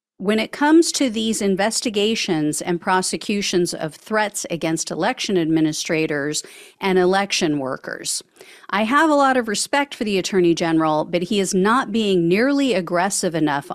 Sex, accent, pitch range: female, American, 175-235 Hz